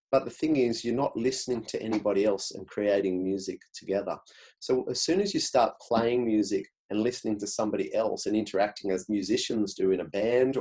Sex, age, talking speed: male, 30-49, 200 wpm